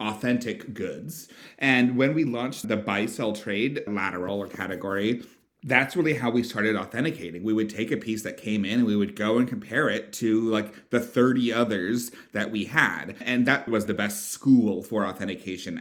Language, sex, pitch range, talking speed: English, male, 100-120 Hz, 190 wpm